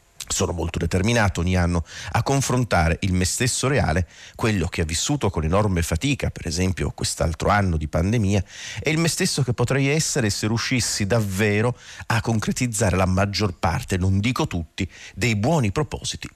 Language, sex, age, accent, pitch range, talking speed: Italian, male, 40-59, native, 90-110 Hz, 165 wpm